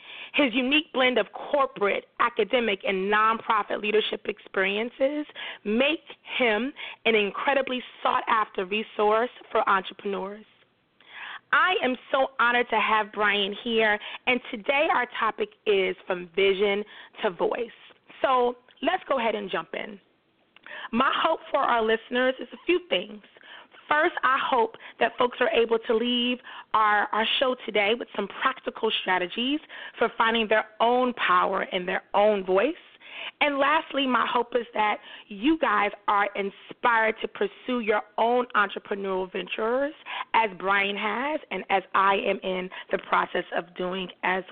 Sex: female